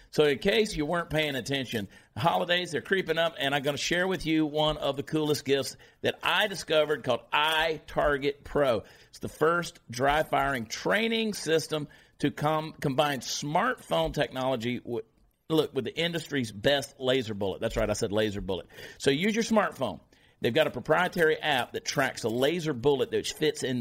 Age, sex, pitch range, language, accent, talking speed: 50-69, male, 125-155 Hz, English, American, 180 wpm